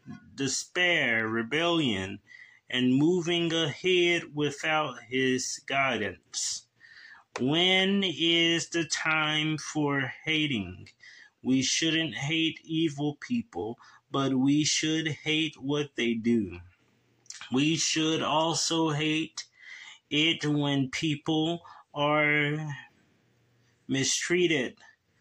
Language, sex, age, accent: English, male, 20-39, American